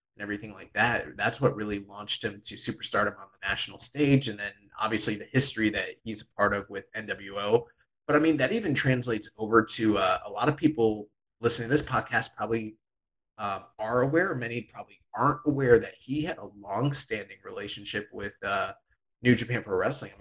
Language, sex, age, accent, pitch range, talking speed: English, male, 20-39, American, 105-120 Hz, 195 wpm